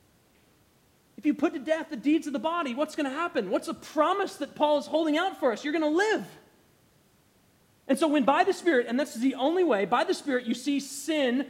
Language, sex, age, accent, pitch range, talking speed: English, male, 30-49, American, 180-270 Hz, 240 wpm